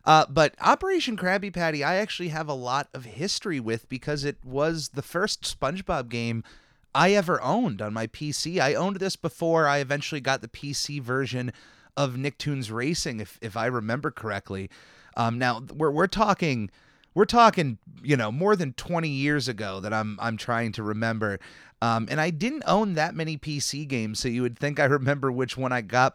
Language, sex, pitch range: English, male, 115-155 Hz